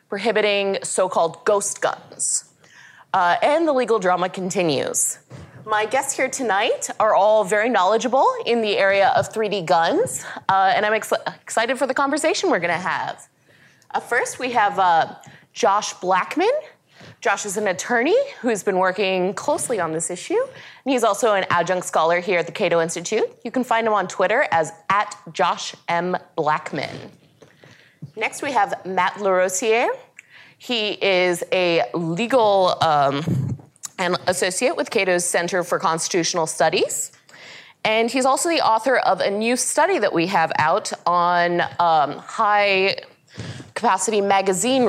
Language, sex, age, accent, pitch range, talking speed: English, female, 20-39, American, 175-250 Hz, 145 wpm